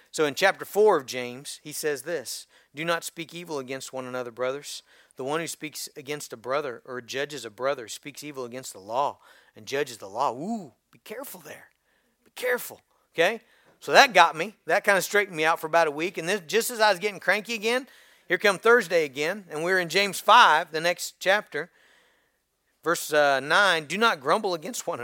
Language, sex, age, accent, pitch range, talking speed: English, male, 40-59, American, 155-220 Hz, 210 wpm